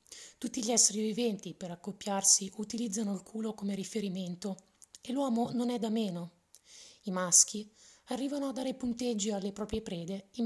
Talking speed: 155 wpm